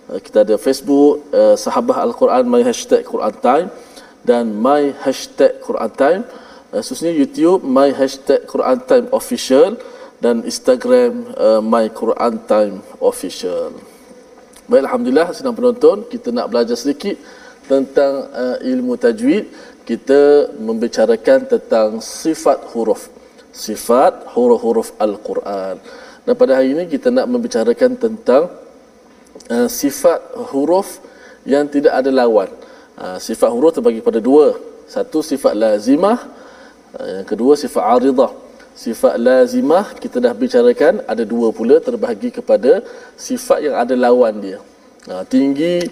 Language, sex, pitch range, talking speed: Malayalam, male, 185-260 Hz, 120 wpm